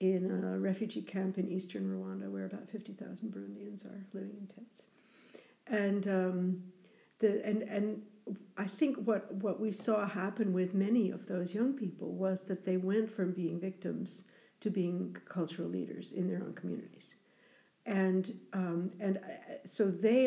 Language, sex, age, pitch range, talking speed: English, female, 60-79, 185-220 Hz, 160 wpm